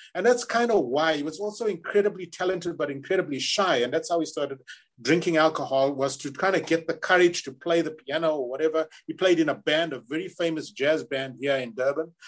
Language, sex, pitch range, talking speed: English, male, 150-190 Hz, 225 wpm